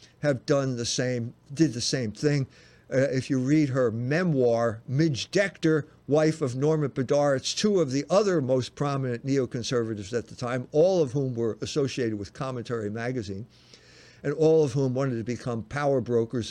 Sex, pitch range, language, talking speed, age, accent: male, 130-185 Hz, English, 170 wpm, 60-79, American